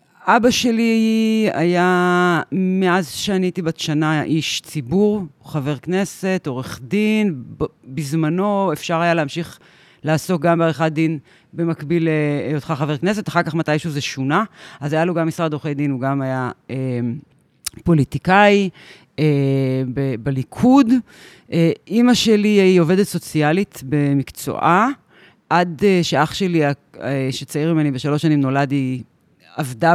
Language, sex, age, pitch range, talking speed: Hebrew, female, 30-49, 140-180 Hz, 130 wpm